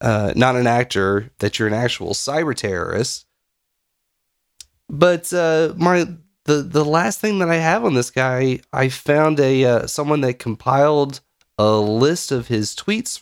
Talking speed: 160 wpm